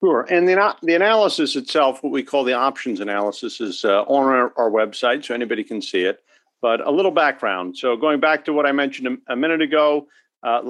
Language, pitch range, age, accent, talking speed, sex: English, 120-155 Hz, 50-69, American, 220 wpm, male